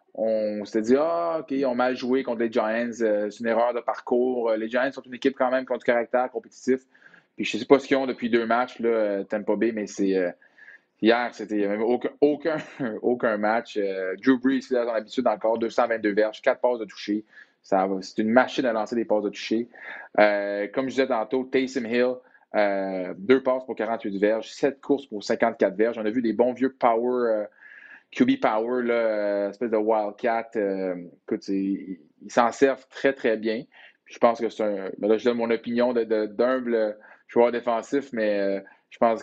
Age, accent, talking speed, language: 20-39, Canadian, 205 wpm, French